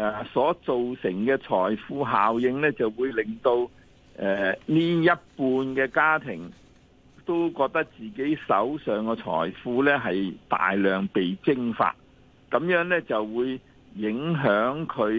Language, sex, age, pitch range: Chinese, male, 50-69, 100-140 Hz